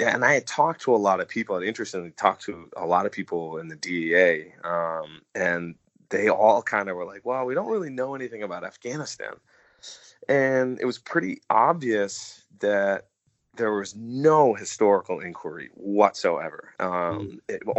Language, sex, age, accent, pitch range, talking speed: English, male, 30-49, American, 90-130 Hz, 165 wpm